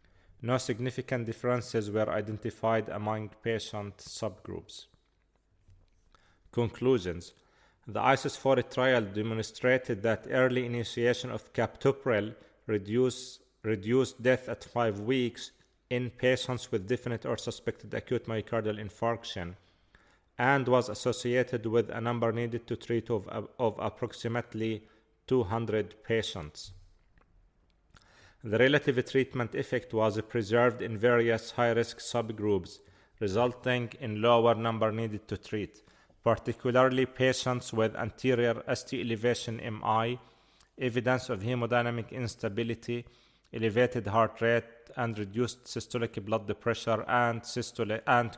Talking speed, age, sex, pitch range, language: 105 wpm, 30-49, male, 110-125 Hz, English